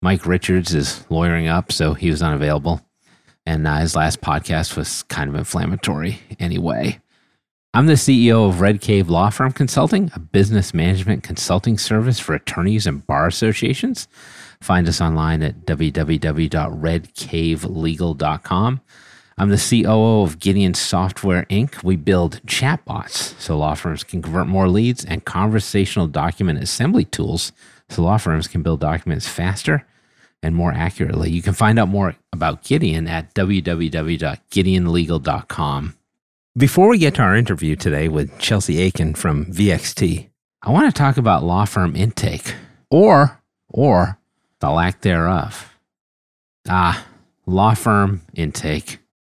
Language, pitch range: English, 80-105 Hz